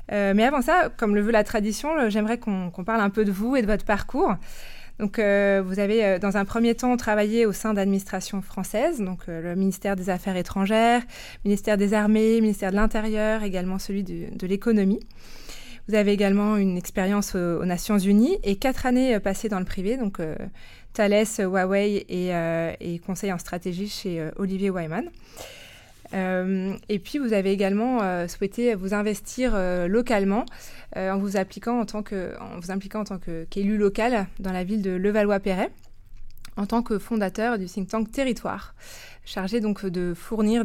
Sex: female